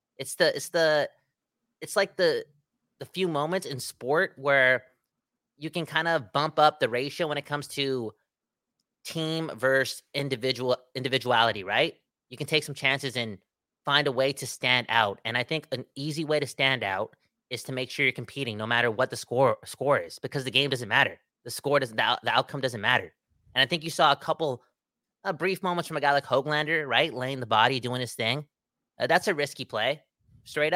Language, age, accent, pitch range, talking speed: English, 20-39, American, 130-160 Hz, 205 wpm